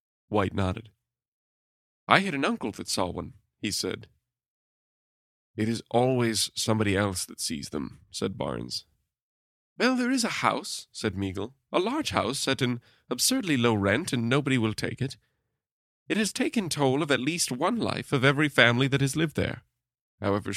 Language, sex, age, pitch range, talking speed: English, male, 30-49, 100-130 Hz, 170 wpm